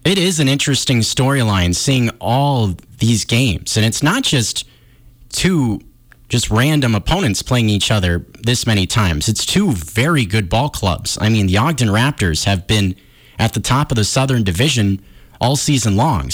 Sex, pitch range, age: male, 105-135 Hz, 30-49